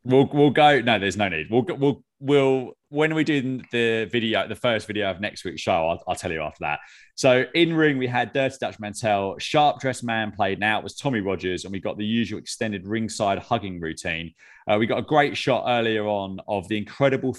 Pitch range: 100-130 Hz